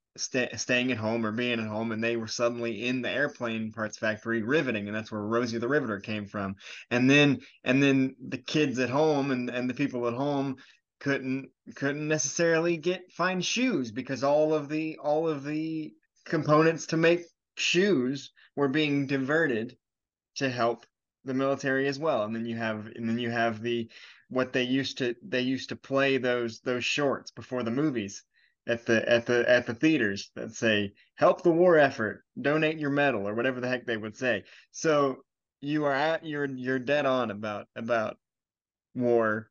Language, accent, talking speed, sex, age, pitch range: English, American, 185 wpm, male, 20-39, 115-145 Hz